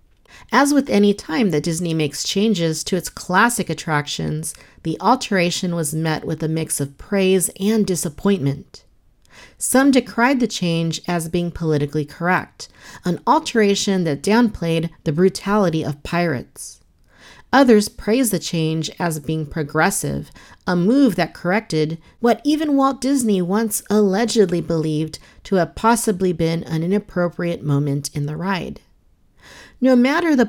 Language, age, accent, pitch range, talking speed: English, 40-59, American, 160-215 Hz, 140 wpm